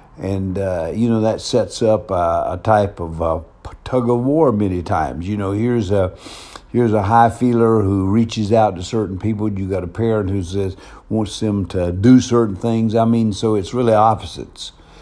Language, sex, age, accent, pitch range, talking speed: English, male, 60-79, American, 95-110 Hz, 195 wpm